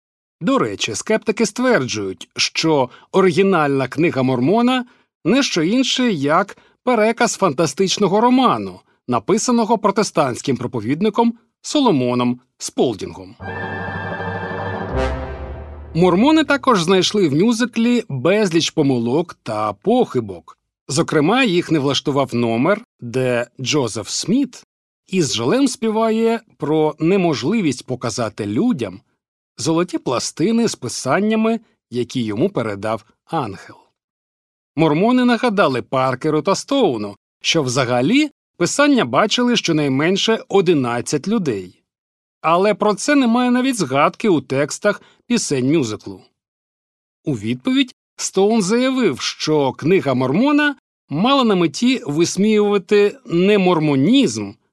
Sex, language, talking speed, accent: male, Ukrainian, 95 wpm, native